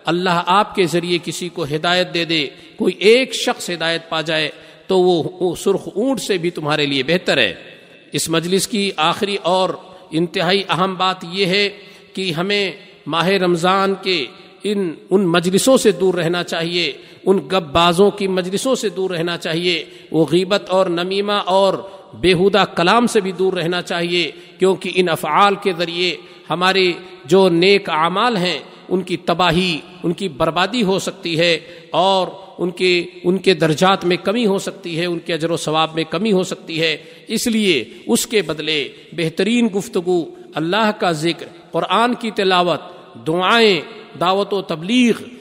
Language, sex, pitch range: Urdu, male, 170-195 Hz